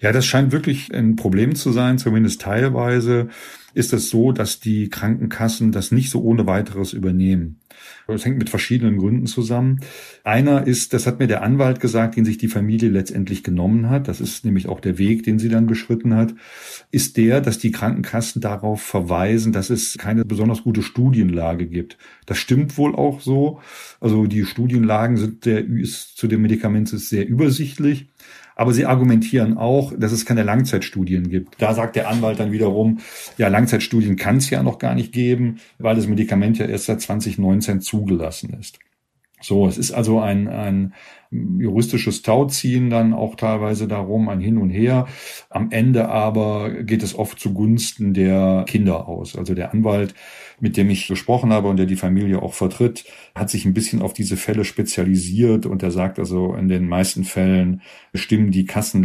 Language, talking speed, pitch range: German, 175 wpm, 95-115 Hz